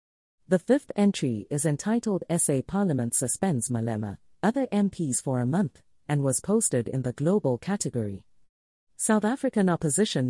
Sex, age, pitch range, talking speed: female, 40-59, 120-195 Hz, 140 wpm